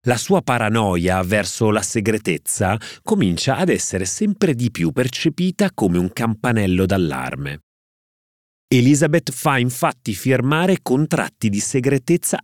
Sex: male